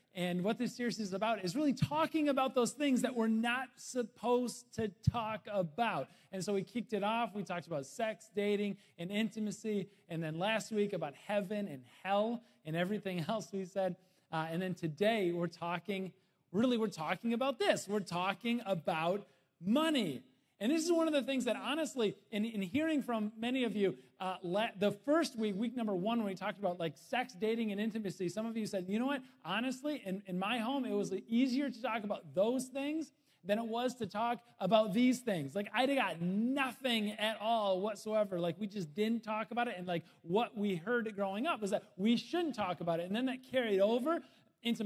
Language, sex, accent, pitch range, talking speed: English, male, American, 185-245 Hz, 205 wpm